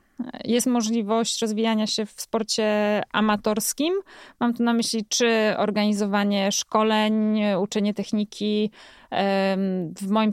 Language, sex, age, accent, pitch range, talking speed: Polish, female, 20-39, native, 200-235 Hz, 105 wpm